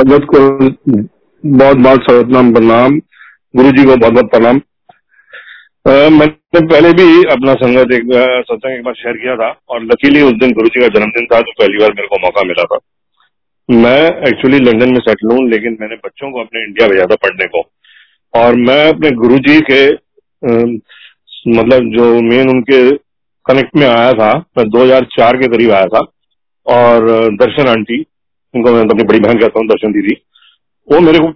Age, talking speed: 40-59, 165 wpm